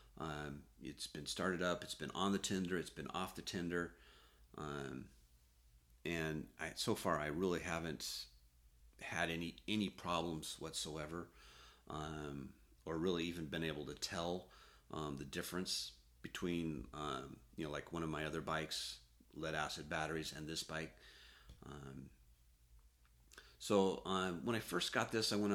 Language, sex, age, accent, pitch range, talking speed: English, male, 40-59, American, 70-90 Hz, 155 wpm